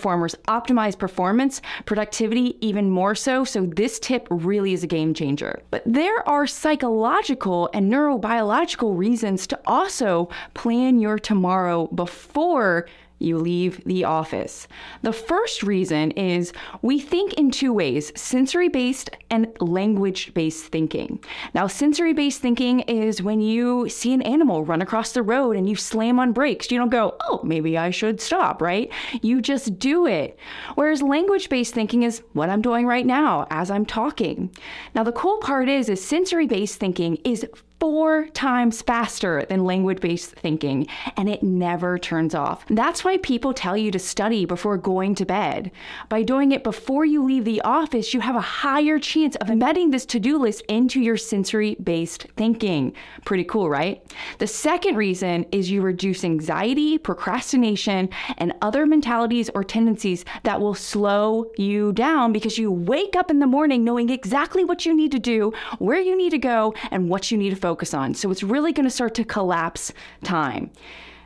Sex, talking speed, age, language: female, 165 wpm, 20-39, English